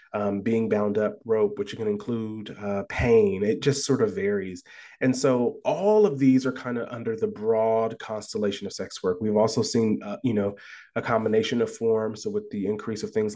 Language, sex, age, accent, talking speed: English, male, 30-49, American, 205 wpm